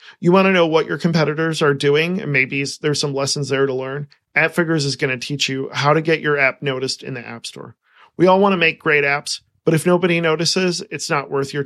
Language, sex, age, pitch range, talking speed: English, male, 40-59, 140-165 Hz, 245 wpm